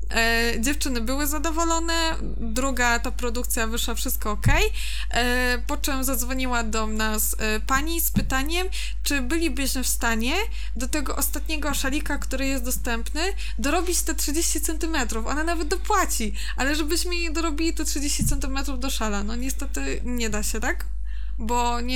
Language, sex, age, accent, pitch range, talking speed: Polish, female, 20-39, native, 225-265 Hz, 150 wpm